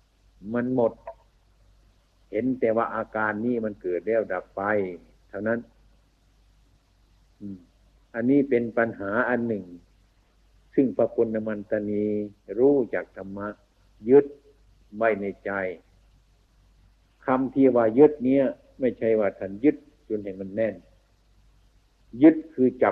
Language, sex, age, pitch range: Thai, male, 60-79, 95-115 Hz